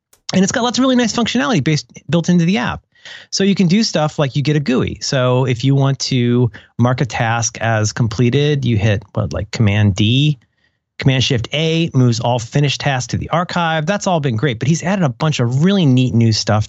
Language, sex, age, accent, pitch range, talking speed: English, male, 30-49, American, 115-170 Hz, 210 wpm